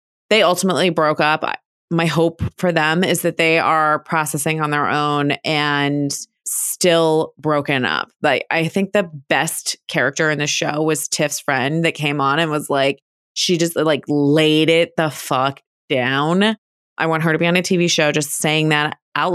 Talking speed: 185 wpm